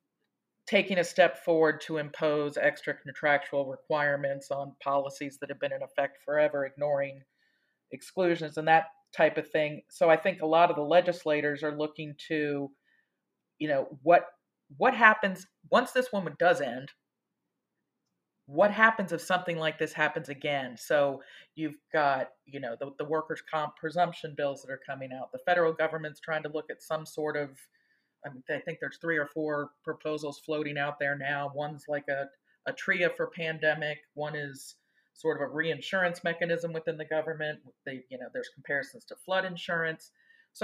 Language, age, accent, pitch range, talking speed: English, 40-59, American, 145-175 Hz, 170 wpm